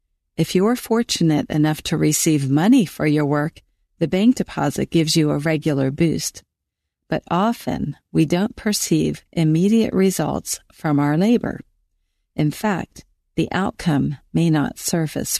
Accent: American